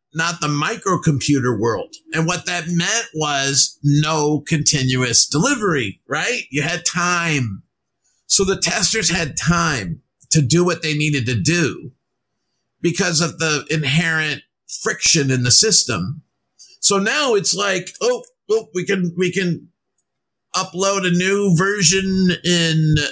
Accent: American